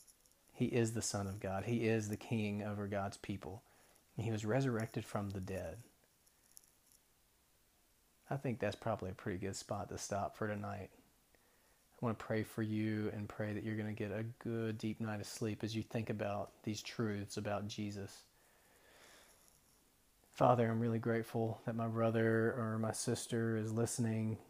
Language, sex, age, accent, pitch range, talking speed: English, male, 40-59, American, 105-120 Hz, 175 wpm